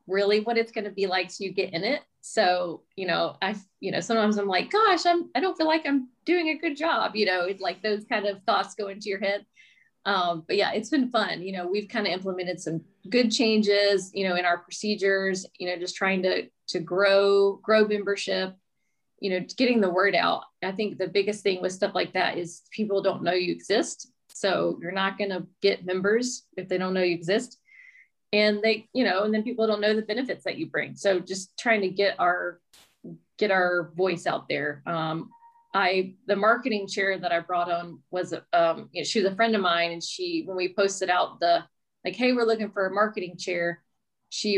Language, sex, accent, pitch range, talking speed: English, female, American, 180-215 Hz, 225 wpm